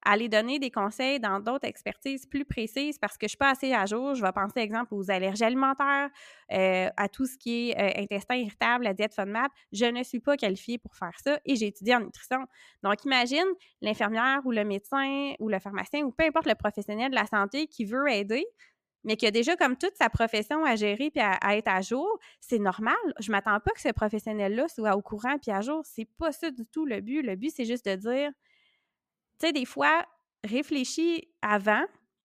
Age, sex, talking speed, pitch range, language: 20-39, female, 225 wpm, 210-280 Hz, French